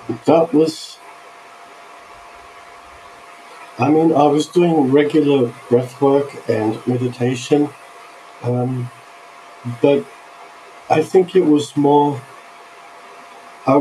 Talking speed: 85 wpm